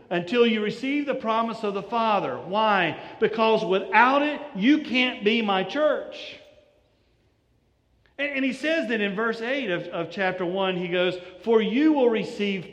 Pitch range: 145-200 Hz